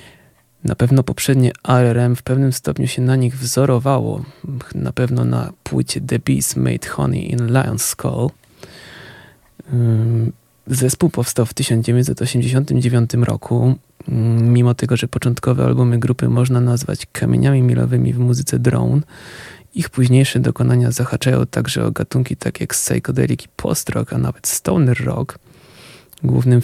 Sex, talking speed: male, 130 wpm